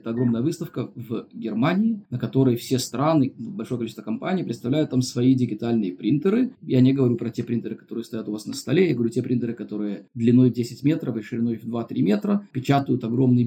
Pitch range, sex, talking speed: 120-140 Hz, male, 195 wpm